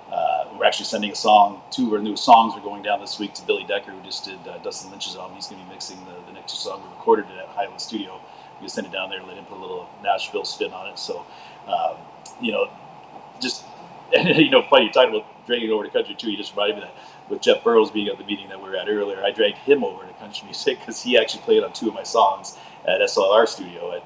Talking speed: 265 wpm